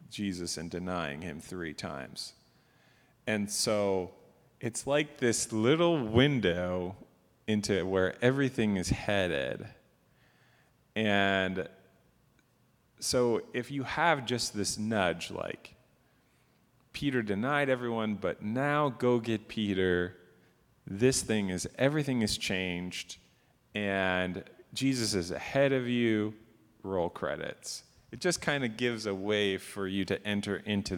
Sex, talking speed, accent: male, 120 wpm, American